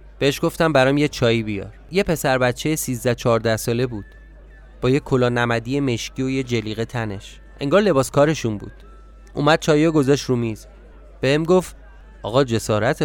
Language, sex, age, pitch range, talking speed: Persian, male, 30-49, 110-145 Hz, 170 wpm